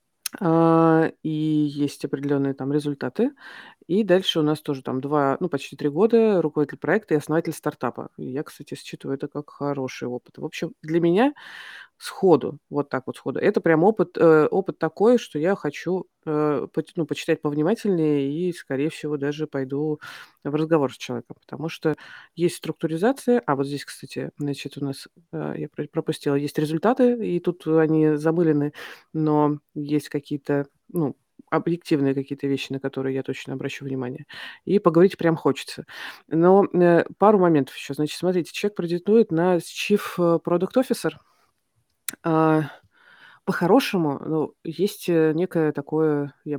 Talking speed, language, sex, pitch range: 145 wpm, Russian, female, 145-175 Hz